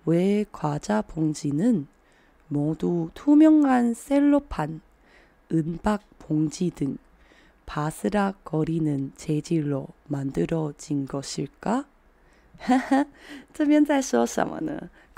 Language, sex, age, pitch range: Chinese, female, 20-39, 150-220 Hz